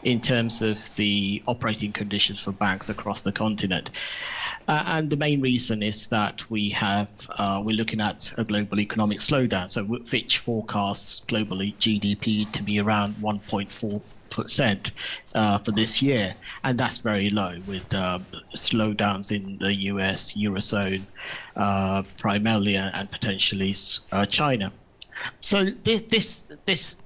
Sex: male